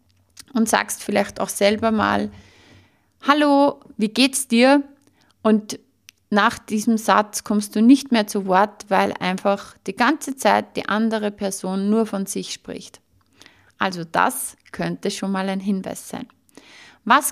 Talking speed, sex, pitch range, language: 140 wpm, female, 195-245 Hz, German